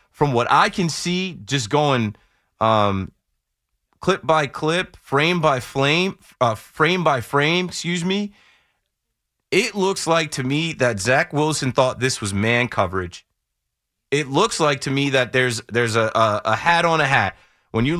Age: 30-49